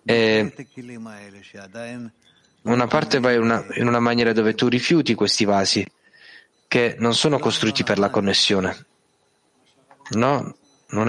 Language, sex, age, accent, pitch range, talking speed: Italian, male, 20-39, native, 110-135 Hz, 120 wpm